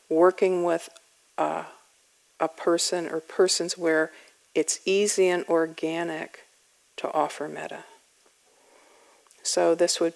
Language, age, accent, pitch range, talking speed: English, 50-69, American, 165-205 Hz, 105 wpm